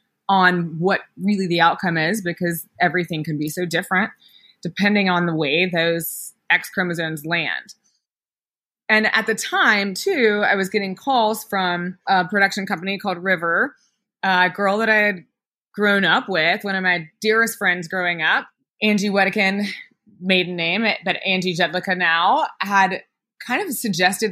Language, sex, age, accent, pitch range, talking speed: English, female, 20-39, American, 180-215 Hz, 155 wpm